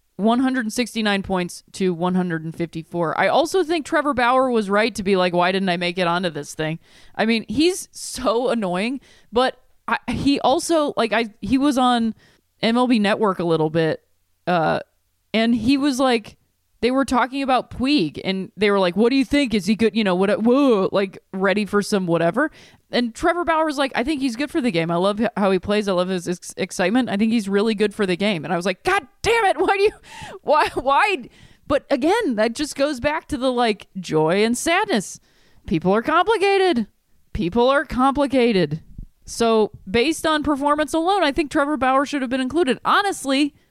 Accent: American